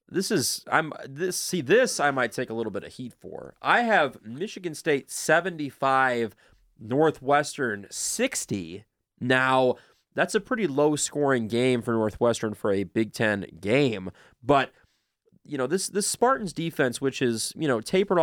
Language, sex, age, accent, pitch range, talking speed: English, male, 20-39, American, 105-135 Hz, 160 wpm